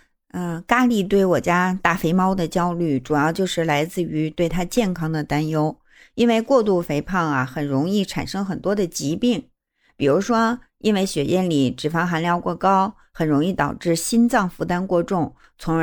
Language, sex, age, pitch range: Chinese, female, 50-69, 165-230 Hz